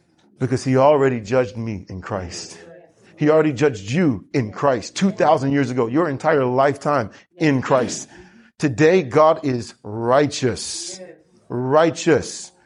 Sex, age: male, 30-49